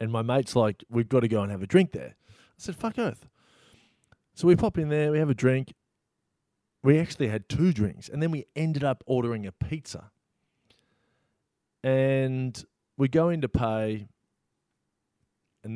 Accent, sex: Australian, male